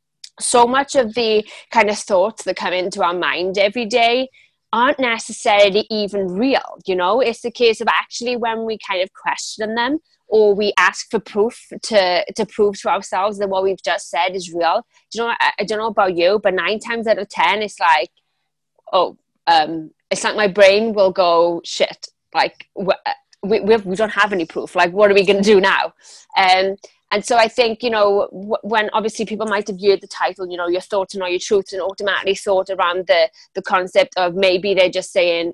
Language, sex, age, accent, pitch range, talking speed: English, female, 20-39, British, 185-230 Hz, 215 wpm